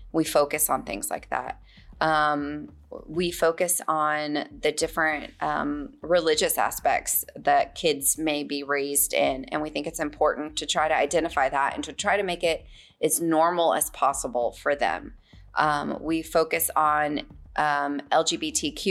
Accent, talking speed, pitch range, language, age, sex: American, 155 wpm, 145-165 Hz, English, 30-49, female